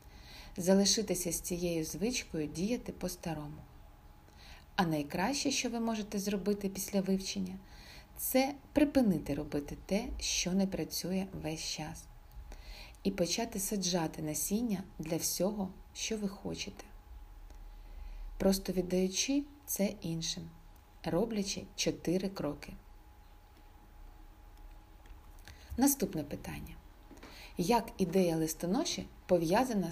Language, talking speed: Ukrainian, 90 wpm